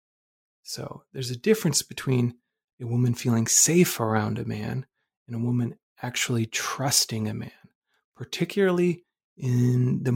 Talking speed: 130 wpm